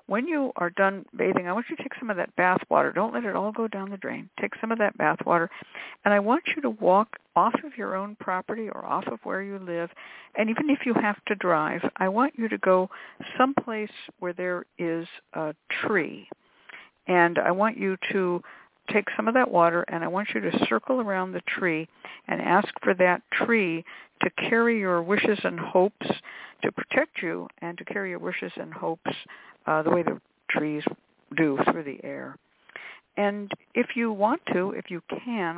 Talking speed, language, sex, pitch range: 205 wpm, English, female, 170-220 Hz